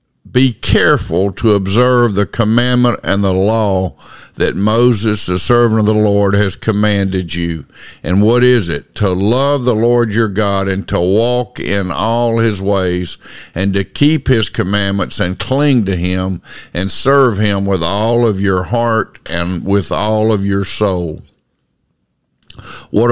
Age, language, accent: 50-69, English, American